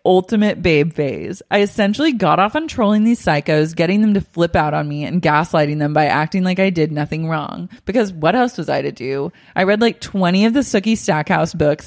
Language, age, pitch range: English, 20-39, 150-190 Hz